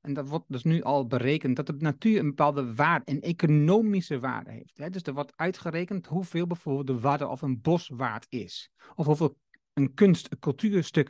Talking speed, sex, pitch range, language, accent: 190 wpm, male, 135-180 Hz, Dutch, Dutch